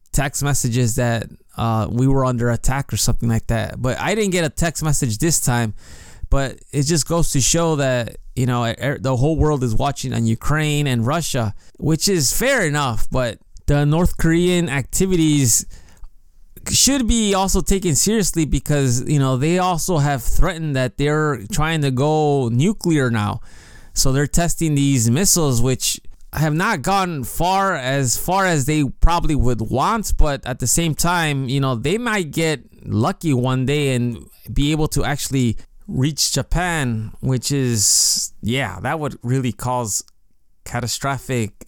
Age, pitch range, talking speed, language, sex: 20-39, 120-155 Hz, 160 wpm, English, male